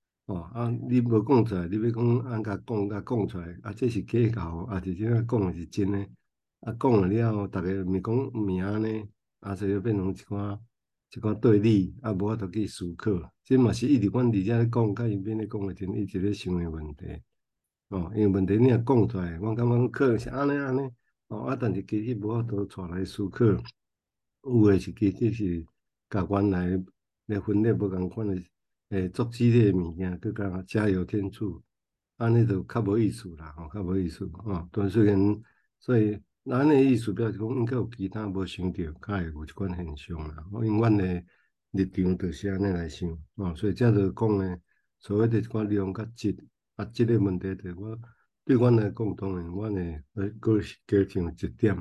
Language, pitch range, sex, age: Chinese, 95-110 Hz, male, 60-79